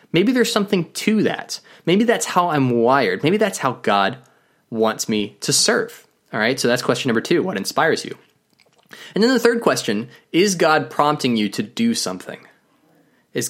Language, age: English, 20-39